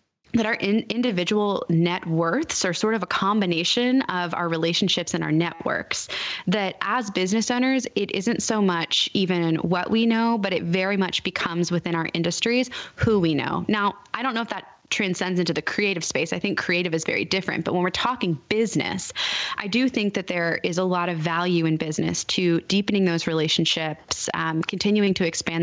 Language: English